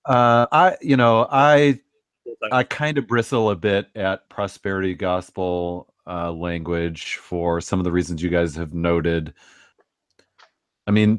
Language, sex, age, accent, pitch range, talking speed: English, male, 40-59, American, 95-120 Hz, 145 wpm